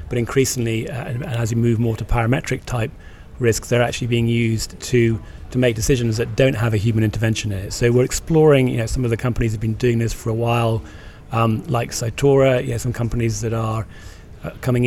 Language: English